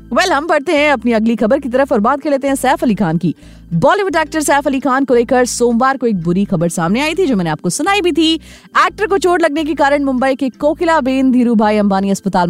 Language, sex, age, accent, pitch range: Hindi, female, 30-49, native, 210-315 Hz